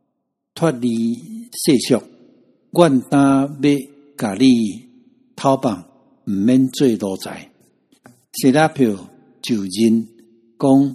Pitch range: 110-150 Hz